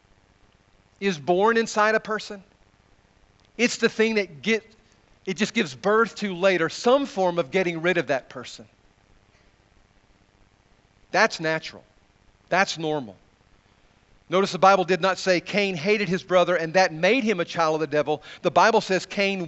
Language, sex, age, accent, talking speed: English, male, 40-59, American, 155 wpm